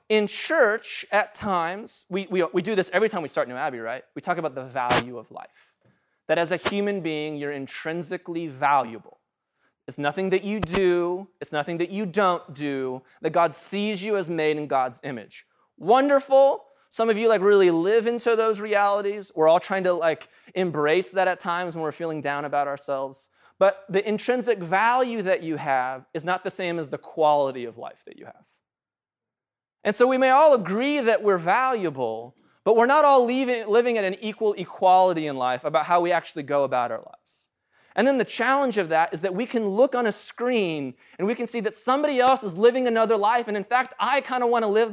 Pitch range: 150-215 Hz